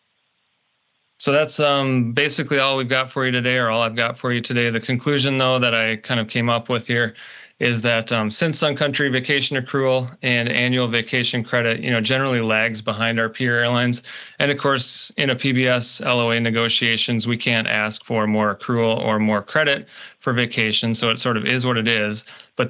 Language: English